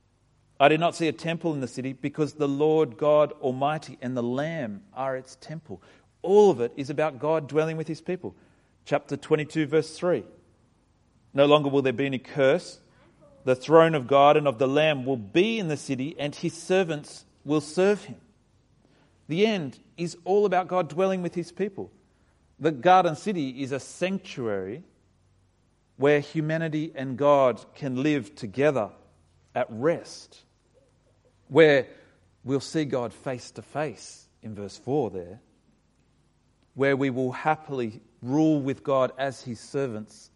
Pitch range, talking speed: 120-155 Hz, 160 wpm